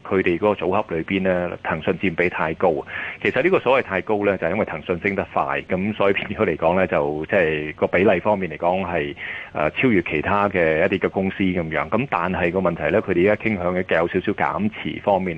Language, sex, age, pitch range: Chinese, male, 30-49, 80-100 Hz